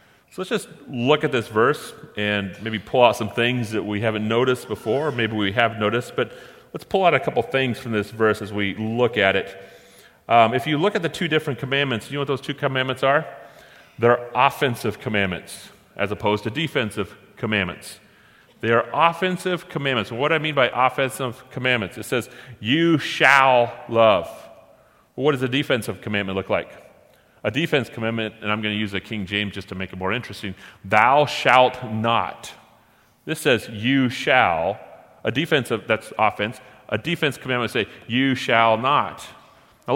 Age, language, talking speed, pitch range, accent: 40-59, English, 180 wpm, 105-135 Hz, American